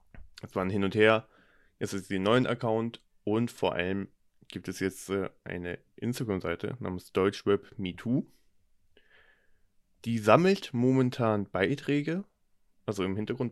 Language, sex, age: German, male, 20-39